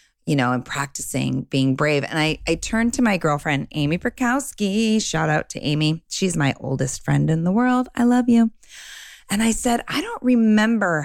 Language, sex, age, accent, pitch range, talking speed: English, female, 30-49, American, 140-205 Hz, 190 wpm